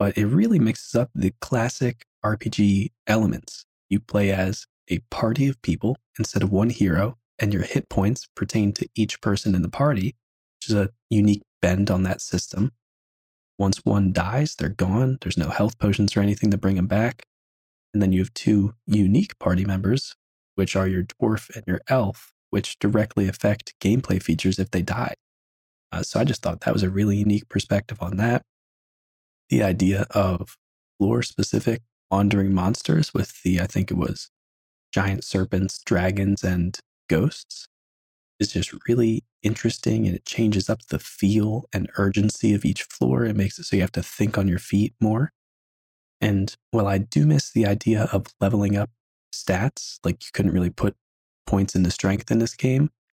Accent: American